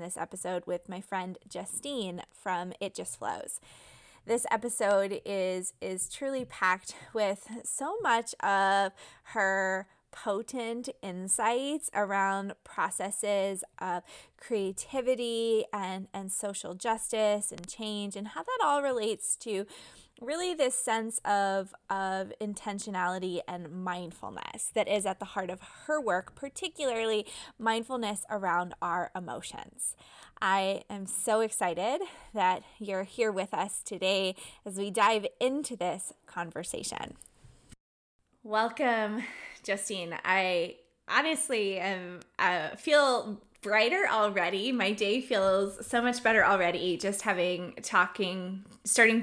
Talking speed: 115 wpm